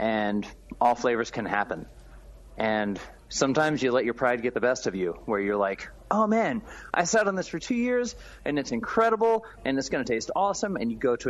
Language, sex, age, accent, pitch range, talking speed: English, male, 30-49, American, 105-135 Hz, 210 wpm